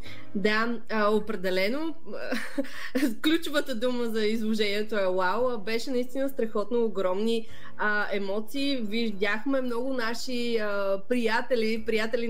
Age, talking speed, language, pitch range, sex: 20-39, 100 wpm, Bulgarian, 205-250 Hz, female